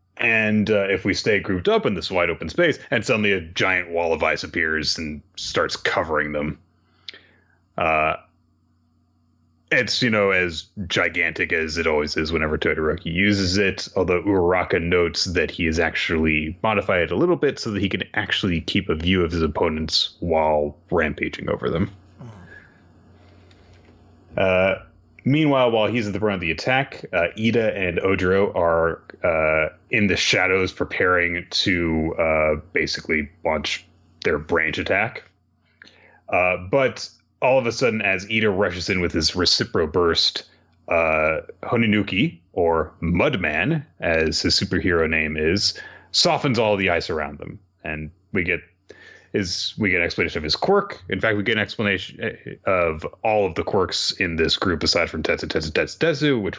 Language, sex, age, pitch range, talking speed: English, male, 30-49, 80-100 Hz, 160 wpm